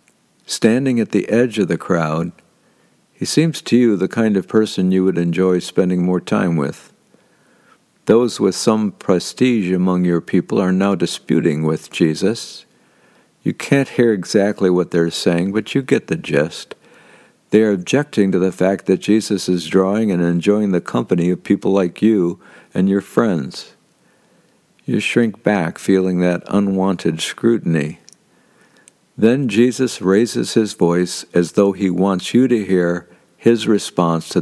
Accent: American